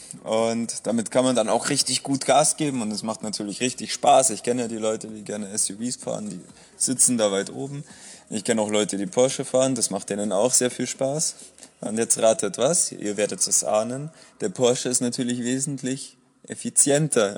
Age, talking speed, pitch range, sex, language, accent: 20-39, 200 wpm, 115-140 Hz, male, German, German